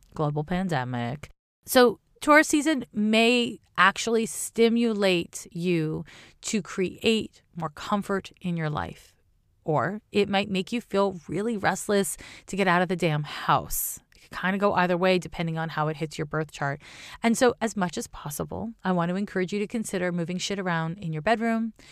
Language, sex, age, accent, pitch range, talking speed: English, female, 30-49, American, 160-210 Hz, 180 wpm